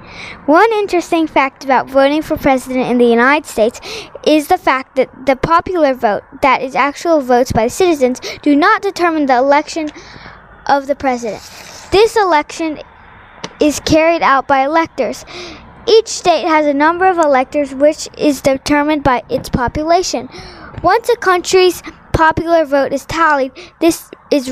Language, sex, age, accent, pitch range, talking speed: English, female, 10-29, American, 260-325 Hz, 150 wpm